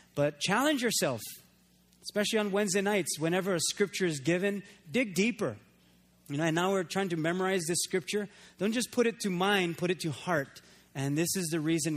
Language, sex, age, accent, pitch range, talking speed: English, male, 30-49, American, 165-210 Hz, 185 wpm